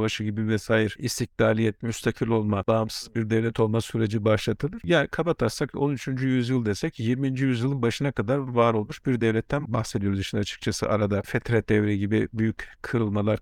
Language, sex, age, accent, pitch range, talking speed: Turkish, male, 50-69, native, 105-130 Hz, 150 wpm